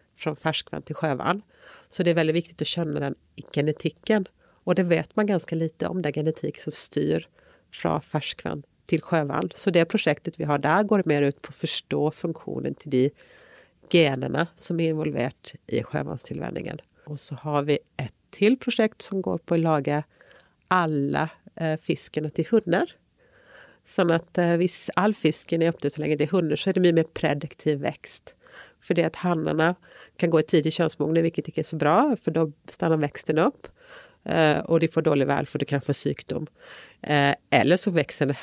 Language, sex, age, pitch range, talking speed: English, female, 40-59, 145-175 Hz, 185 wpm